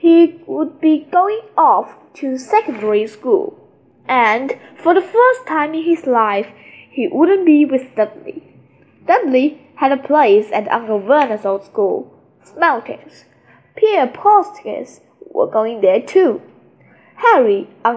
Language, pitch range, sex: Chinese, 220-355 Hz, female